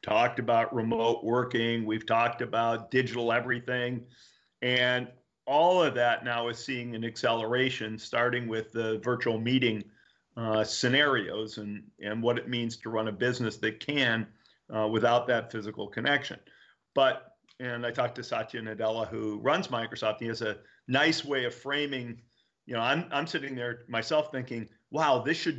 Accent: American